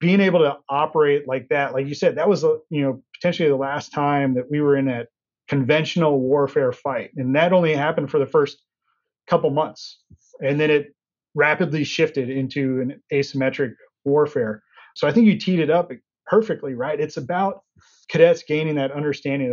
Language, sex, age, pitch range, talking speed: English, male, 30-49, 135-180 Hz, 180 wpm